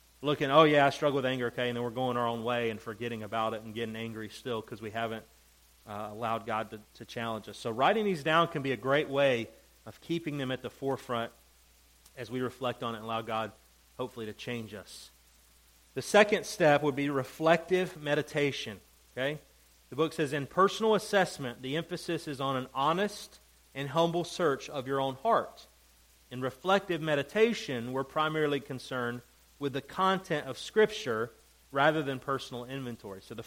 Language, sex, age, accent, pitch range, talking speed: English, male, 30-49, American, 115-145 Hz, 185 wpm